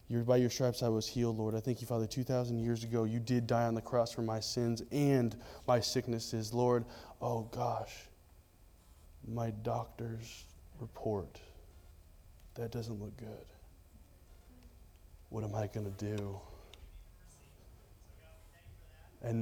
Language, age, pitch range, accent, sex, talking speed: English, 20-39, 90-130 Hz, American, male, 135 wpm